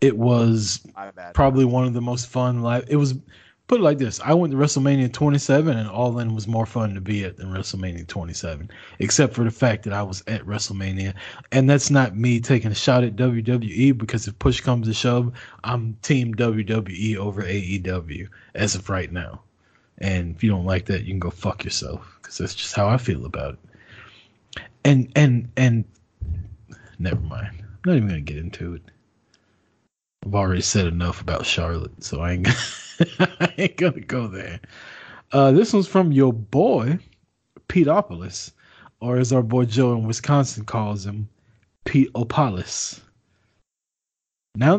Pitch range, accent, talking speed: 95-130 Hz, American, 175 wpm